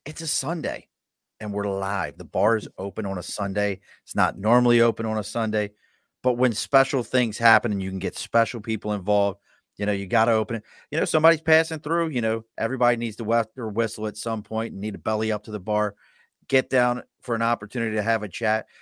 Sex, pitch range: male, 105-125 Hz